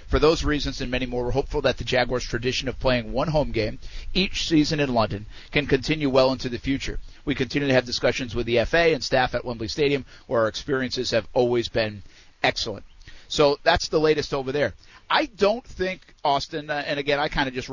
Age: 50-69